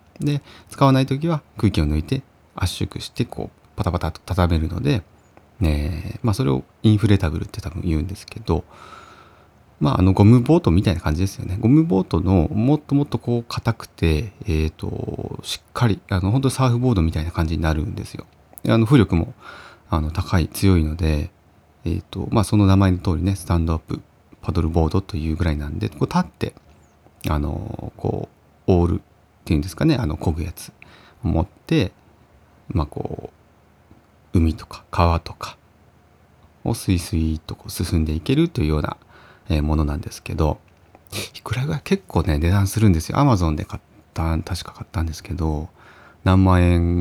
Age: 40-59